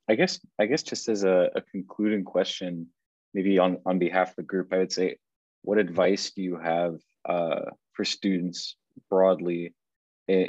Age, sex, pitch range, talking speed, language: 20-39, male, 90-100 Hz, 170 wpm, English